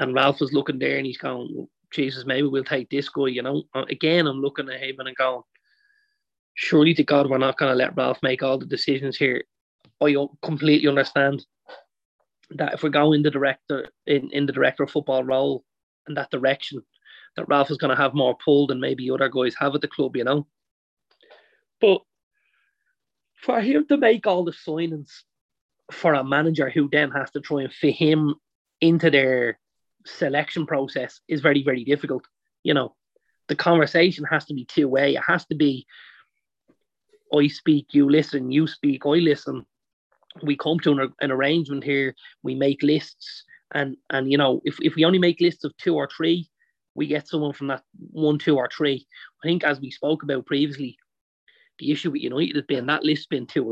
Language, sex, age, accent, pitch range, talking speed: English, male, 30-49, Irish, 135-155 Hz, 190 wpm